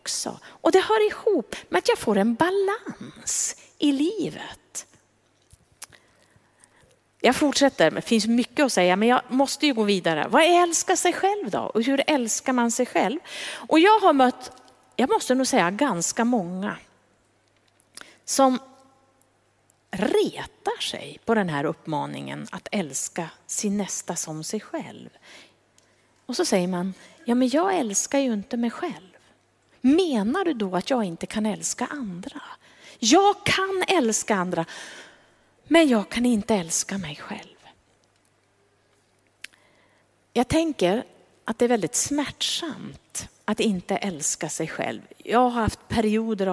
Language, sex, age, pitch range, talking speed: Swedish, female, 30-49, 165-275 Hz, 140 wpm